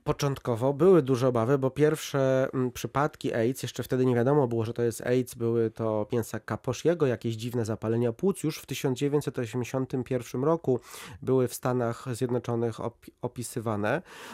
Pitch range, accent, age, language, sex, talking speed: 125-155 Hz, native, 30-49, Polish, male, 150 wpm